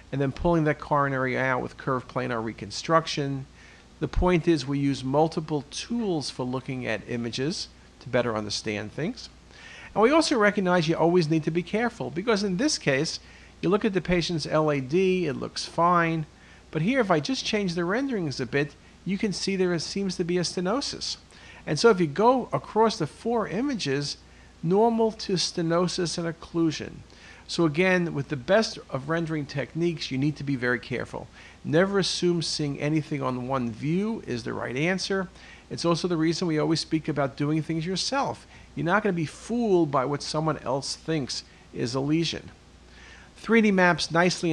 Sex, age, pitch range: male, 50-69, 135-180 Hz